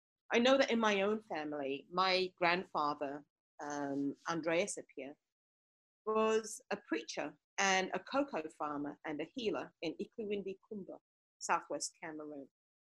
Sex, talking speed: female, 120 wpm